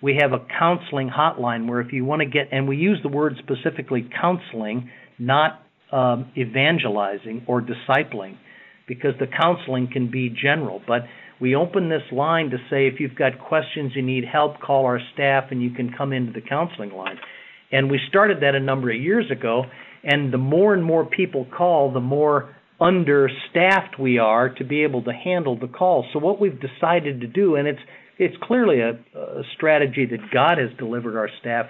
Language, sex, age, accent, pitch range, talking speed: English, male, 50-69, American, 125-165 Hz, 190 wpm